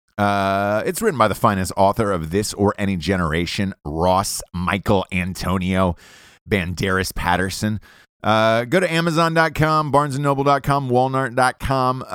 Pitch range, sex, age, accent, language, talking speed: 90-140 Hz, male, 30-49, American, English, 115 wpm